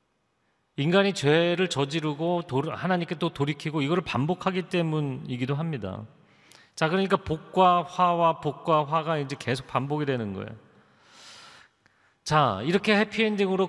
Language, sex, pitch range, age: Korean, male, 140-185 Hz, 40-59